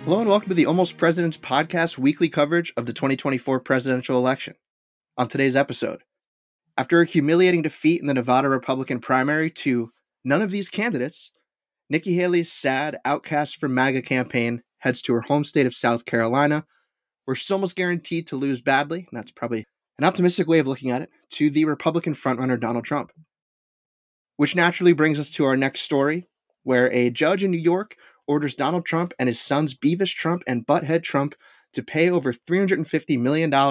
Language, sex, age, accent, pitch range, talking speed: English, male, 20-39, American, 125-170 Hz, 180 wpm